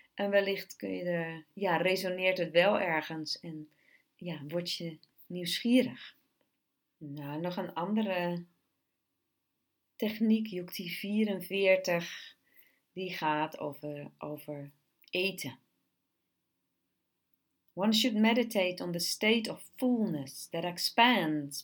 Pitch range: 160-205 Hz